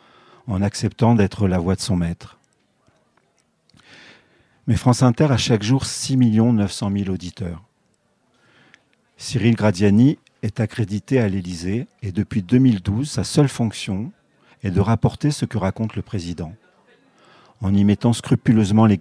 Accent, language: French, French